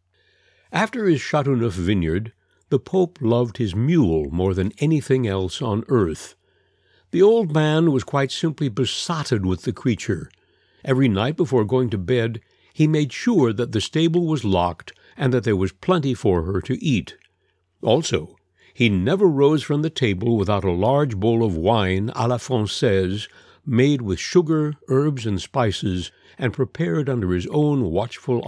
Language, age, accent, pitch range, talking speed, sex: English, 60-79, American, 100-150 Hz, 160 wpm, male